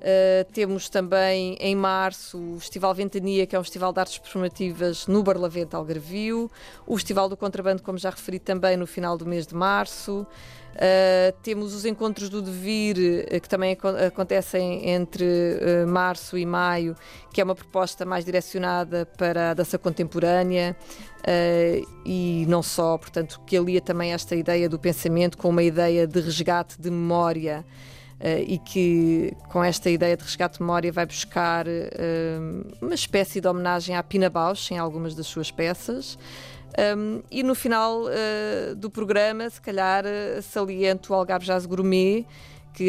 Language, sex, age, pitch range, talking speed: Portuguese, female, 20-39, 175-190 Hz, 150 wpm